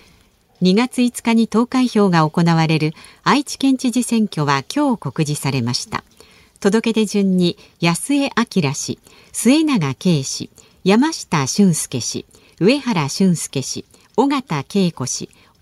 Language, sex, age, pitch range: Japanese, female, 50-69, 155-235 Hz